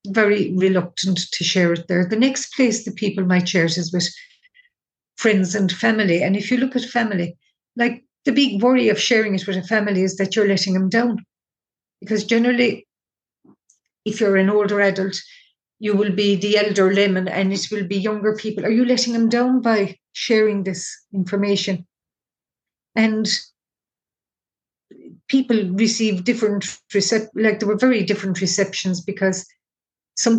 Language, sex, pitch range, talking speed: English, female, 190-220 Hz, 160 wpm